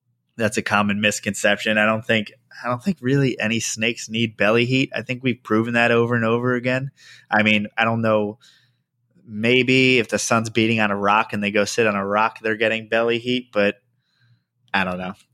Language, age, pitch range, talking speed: English, 20-39, 105-125 Hz, 205 wpm